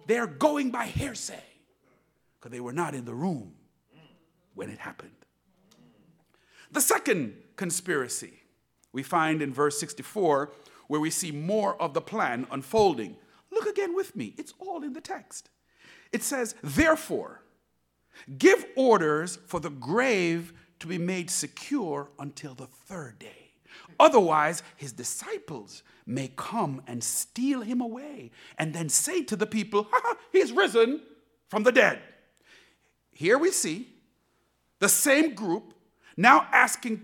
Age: 50-69